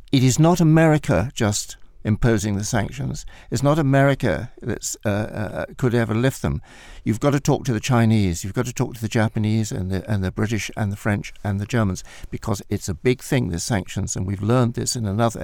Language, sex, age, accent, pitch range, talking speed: English, male, 60-79, British, 100-130 Hz, 220 wpm